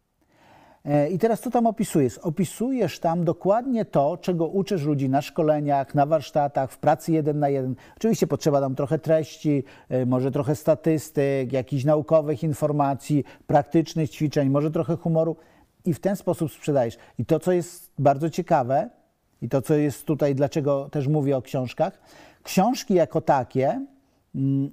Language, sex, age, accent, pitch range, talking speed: Polish, male, 50-69, native, 135-170 Hz, 150 wpm